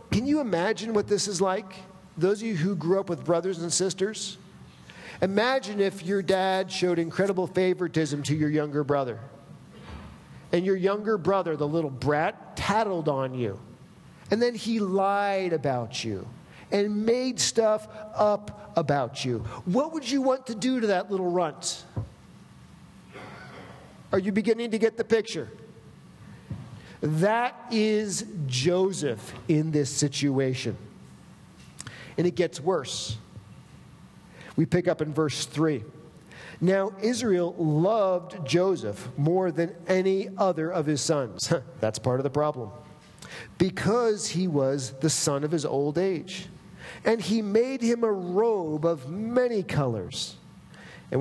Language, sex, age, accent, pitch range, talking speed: English, male, 50-69, American, 150-205 Hz, 140 wpm